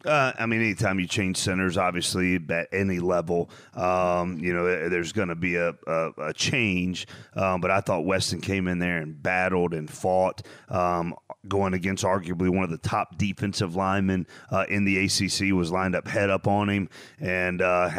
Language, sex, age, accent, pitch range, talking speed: English, male, 30-49, American, 90-105 Hz, 190 wpm